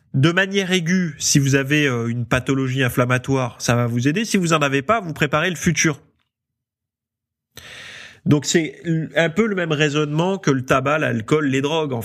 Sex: male